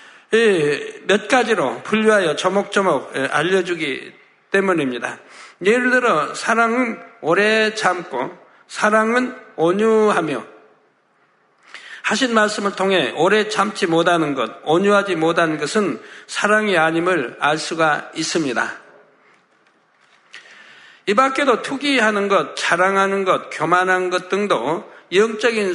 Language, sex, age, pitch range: Korean, male, 60-79, 180-220 Hz